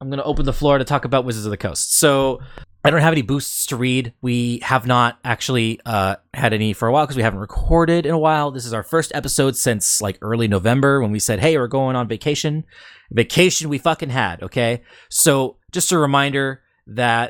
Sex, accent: male, American